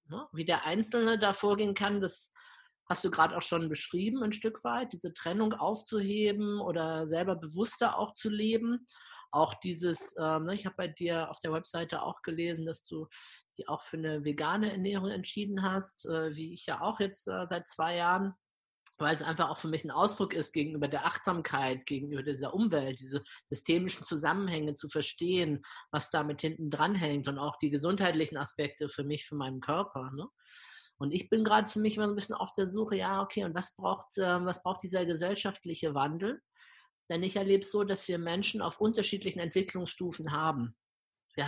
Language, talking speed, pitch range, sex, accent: German, 180 wpm, 160-205 Hz, male, German